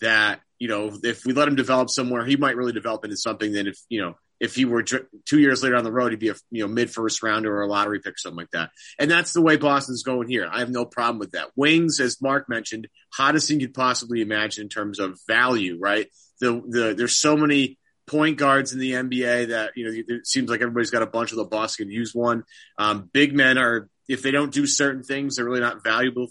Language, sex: English, male